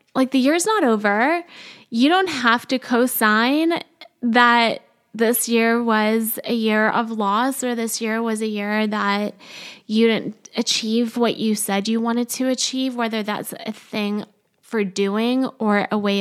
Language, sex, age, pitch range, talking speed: English, female, 20-39, 215-255 Hz, 165 wpm